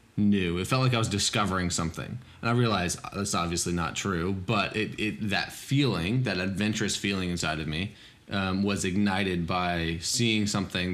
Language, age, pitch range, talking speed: English, 20-39, 90-105 Hz, 175 wpm